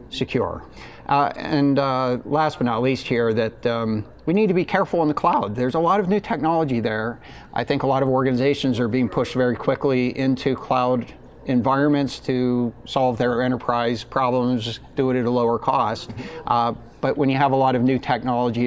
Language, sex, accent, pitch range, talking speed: English, male, American, 115-135 Hz, 195 wpm